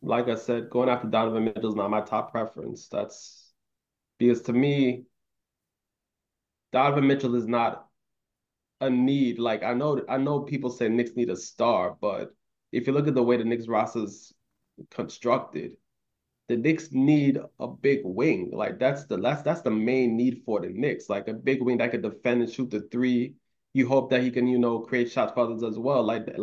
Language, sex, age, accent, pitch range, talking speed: English, male, 20-39, American, 120-135 Hz, 195 wpm